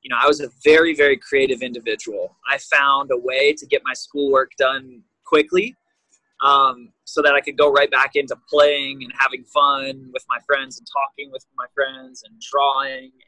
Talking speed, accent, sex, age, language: 190 wpm, American, male, 20-39, English